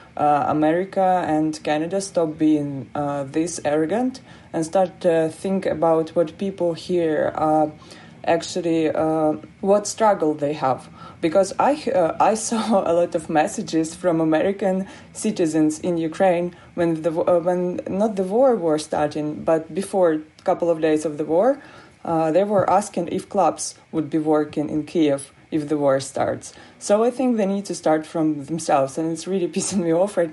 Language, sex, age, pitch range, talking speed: German, female, 20-39, 155-185 Hz, 170 wpm